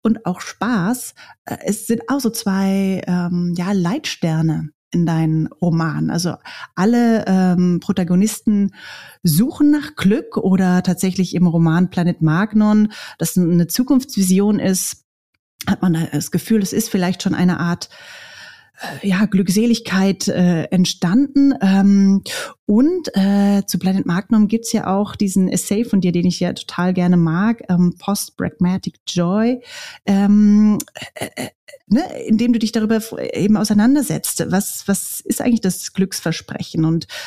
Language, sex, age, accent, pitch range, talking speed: German, female, 30-49, German, 175-220 Hz, 140 wpm